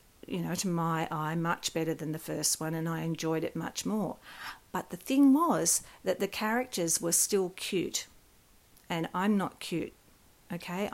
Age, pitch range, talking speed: 50-69, 170-205 Hz, 175 wpm